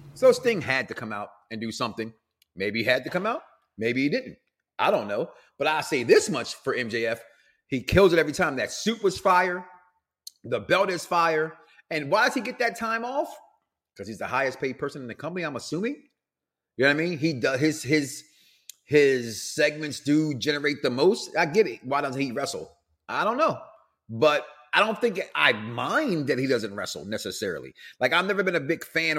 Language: English